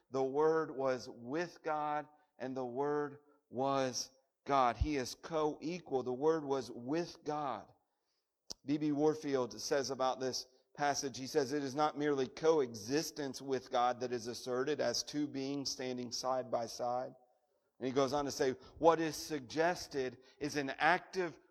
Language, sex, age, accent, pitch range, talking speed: English, male, 40-59, American, 120-160 Hz, 155 wpm